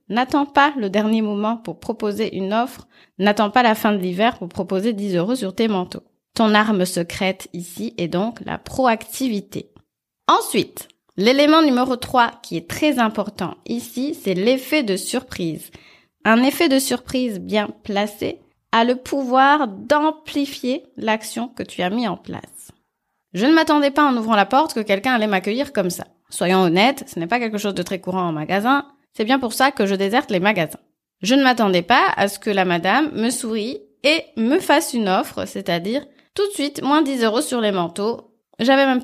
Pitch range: 200-265 Hz